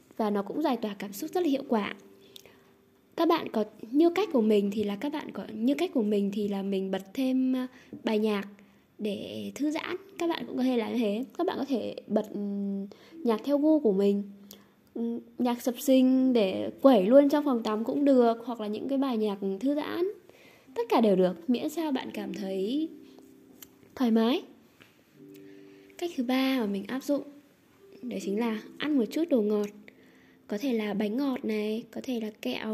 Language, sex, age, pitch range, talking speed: Vietnamese, female, 10-29, 210-285 Hz, 200 wpm